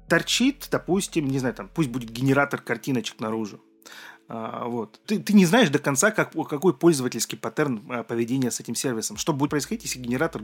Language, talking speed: Russian, 175 wpm